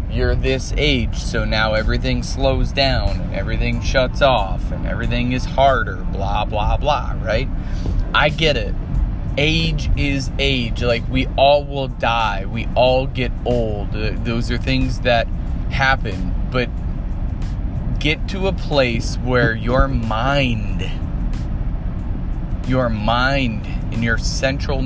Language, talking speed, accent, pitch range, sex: English, 130 wpm, American, 105-135 Hz, male